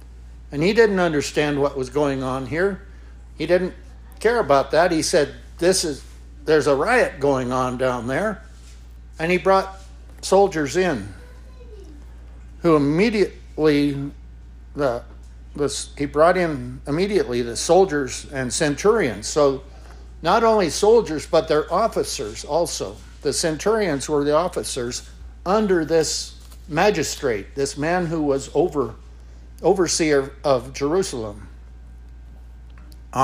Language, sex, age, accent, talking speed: English, male, 60-79, American, 120 wpm